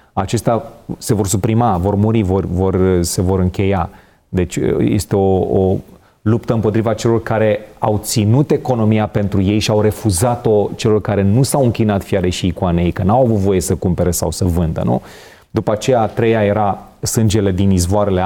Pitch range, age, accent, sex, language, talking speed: 95-110 Hz, 30-49, native, male, Romanian, 175 wpm